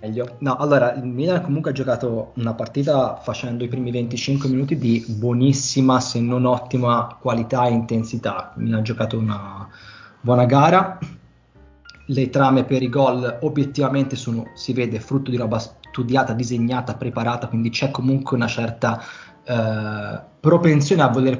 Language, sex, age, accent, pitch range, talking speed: Italian, male, 20-39, native, 115-135 Hz, 150 wpm